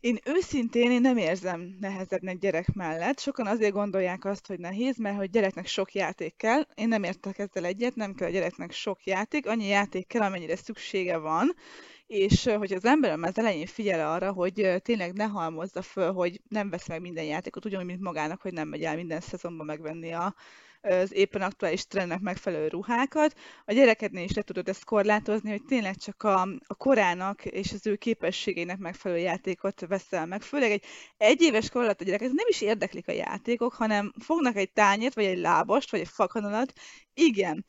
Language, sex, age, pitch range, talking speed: Hungarian, female, 20-39, 185-230 Hz, 180 wpm